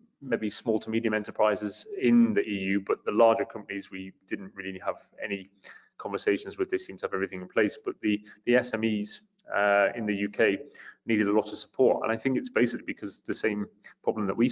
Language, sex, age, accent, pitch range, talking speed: English, male, 30-49, British, 95-115 Hz, 205 wpm